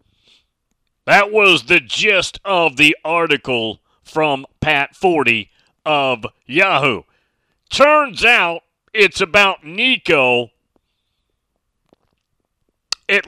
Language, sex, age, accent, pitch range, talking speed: English, male, 40-59, American, 150-215 Hz, 80 wpm